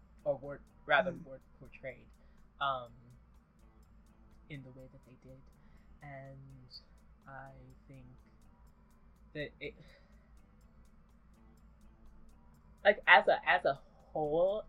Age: 20-39